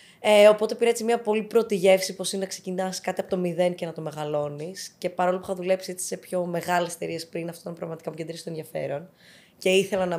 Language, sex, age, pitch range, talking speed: Greek, female, 20-39, 170-200 Hz, 235 wpm